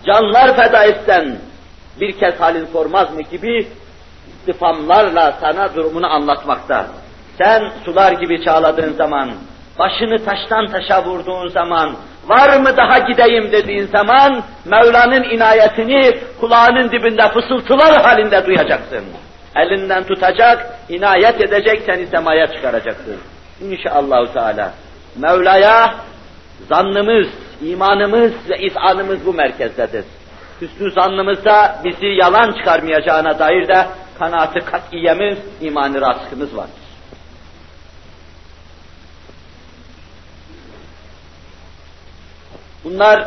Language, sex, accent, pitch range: Turkish, male, native, 150-210 Hz